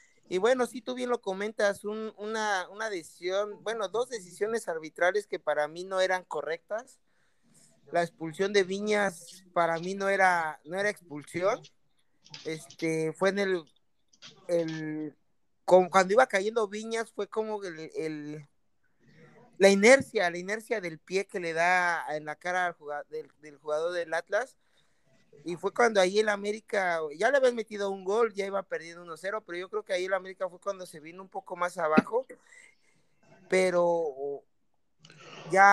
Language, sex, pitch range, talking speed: Spanish, male, 170-210 Hz, 165 wpm